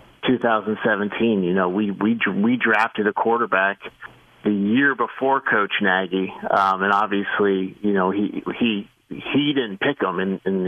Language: English